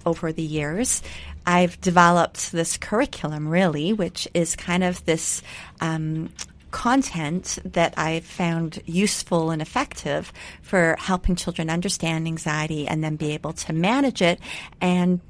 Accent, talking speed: American, 135 wpm